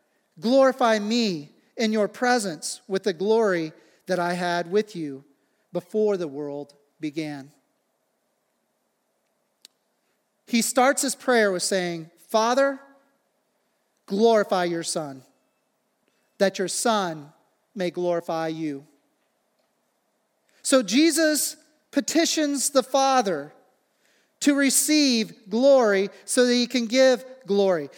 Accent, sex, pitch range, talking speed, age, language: American, male, 195-270 Hz, 100 wpm, 40-59, English